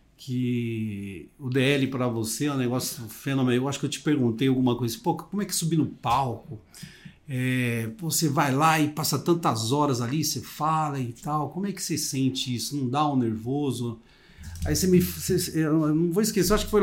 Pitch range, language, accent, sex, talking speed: 120-160 Hz, Portuguese, Brazilian, male, 195 wpm